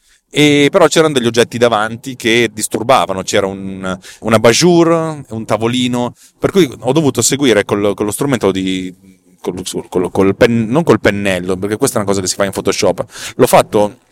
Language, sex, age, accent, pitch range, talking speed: Italian, male, 30-49, native, 95-125 Hz, 180 wpm